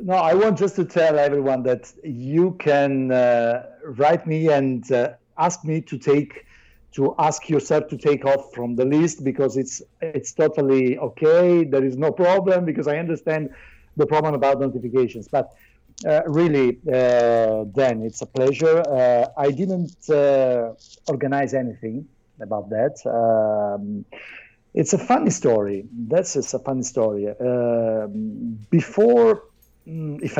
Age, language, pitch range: 50-69, English, 120-155 Hz